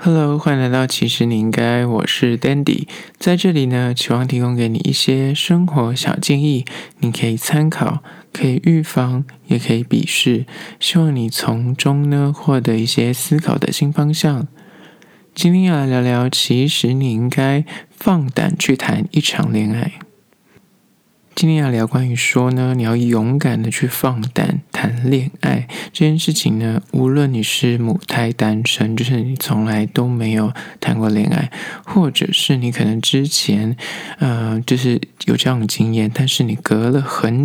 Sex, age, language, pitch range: male, 20-39, Chinese, 115-155 Hz